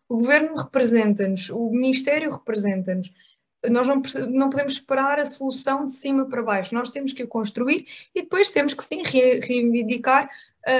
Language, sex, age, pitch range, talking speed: Portuguese, female, 20-39, 215-270 Hz, 150 wpm